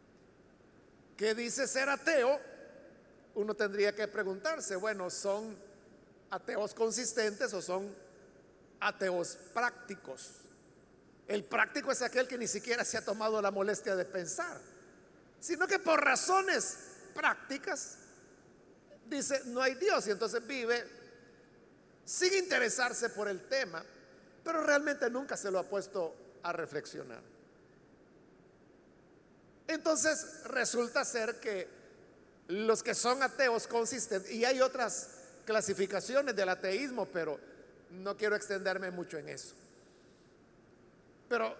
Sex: male